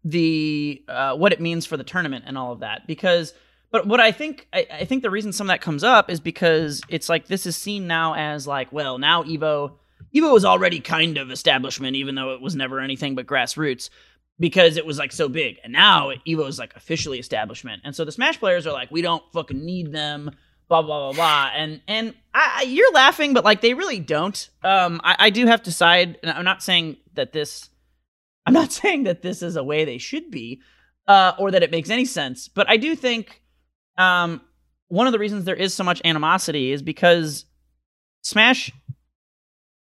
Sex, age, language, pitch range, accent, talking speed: male, 30-49, English, 145-190 Hz, American, 215 wpm